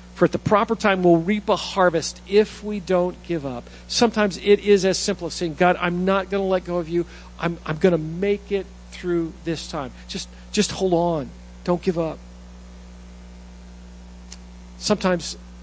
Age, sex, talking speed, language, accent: 50-69, male, 180 wpm, English, American